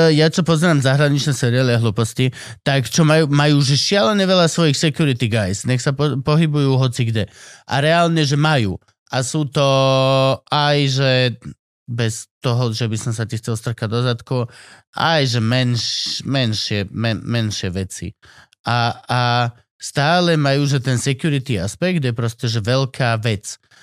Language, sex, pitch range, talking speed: Slovak, male, 120-145 Hz, 155 wpm